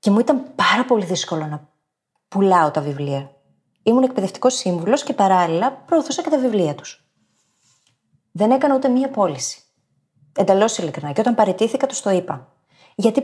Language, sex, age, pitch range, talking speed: Greek, female, 30-49, 165-270 Hz, 150 wpm